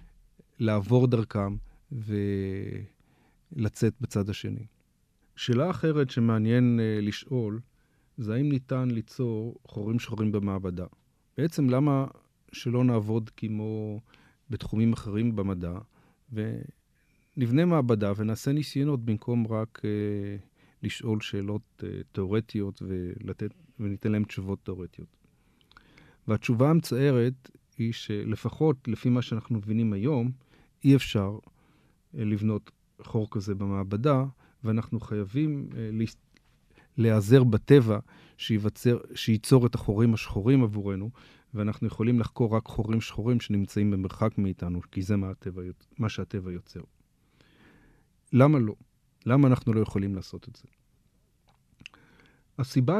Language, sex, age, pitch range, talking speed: Hebrew, male, 40-59, 105-130 Hz, 105 wpm